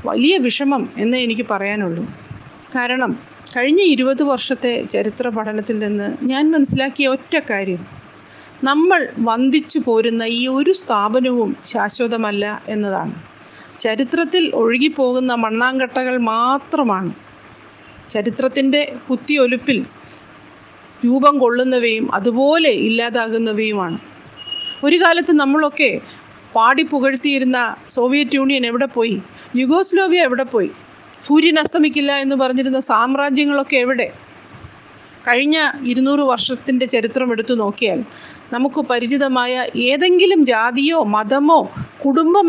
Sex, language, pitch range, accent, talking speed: female, Malayalam, 235-285 Hz, native, 90 wpm